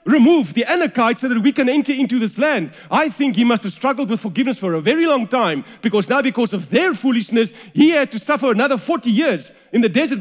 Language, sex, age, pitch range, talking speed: English, male, 40-59, 150-230 Hz, 235 wpm